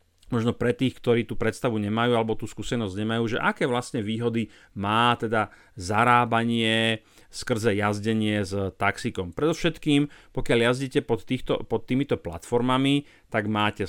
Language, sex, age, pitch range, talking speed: Slovak, male, 40-59, 105-125 Hz, 135 wpm